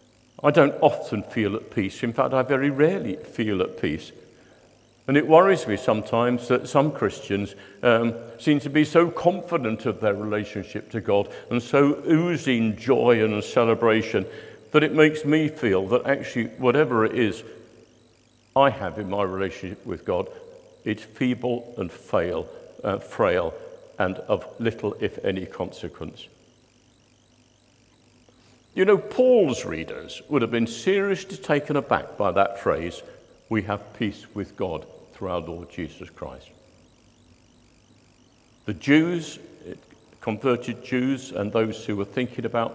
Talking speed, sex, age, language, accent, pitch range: 140 wpm, male, 50-69, English, British, 115-150 Hz